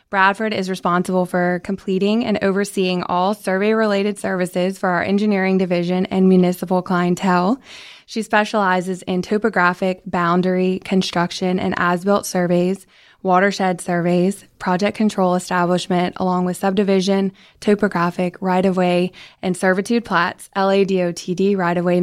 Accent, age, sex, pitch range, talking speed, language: American, 20-39, female, 180-200 Hz, 110 wpm, English